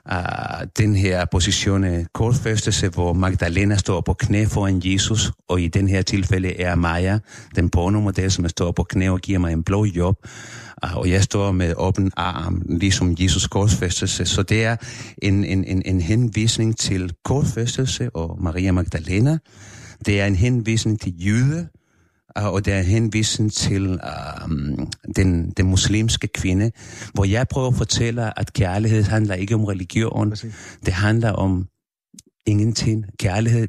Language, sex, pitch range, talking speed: Danish, male, 95-115 Hz, 150 wpm